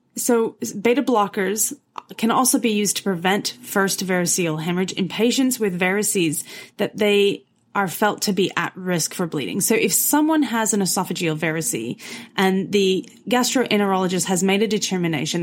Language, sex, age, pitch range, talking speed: English, female, 30-49, 175-220 Hz, 155 wpm